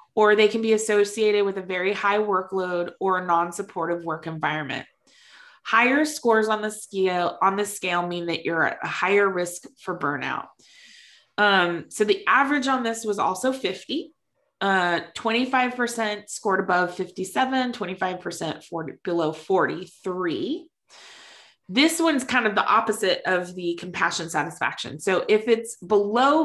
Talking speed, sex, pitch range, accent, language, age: 145 wpm, female, 175-235 Hz, American, English, 20-39